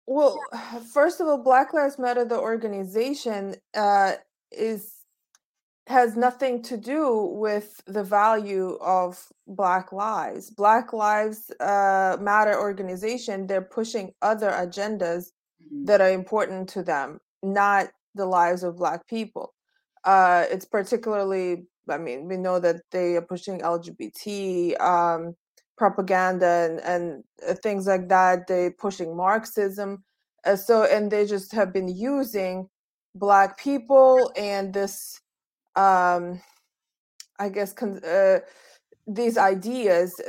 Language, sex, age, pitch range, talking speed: English, female, 20-39, 185-225 Hz, 120 wpm